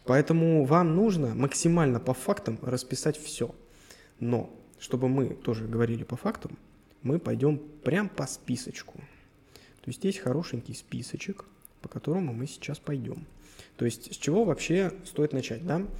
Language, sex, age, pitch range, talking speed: Russian, male, 20-39, 120-155 Hz, 145 wpm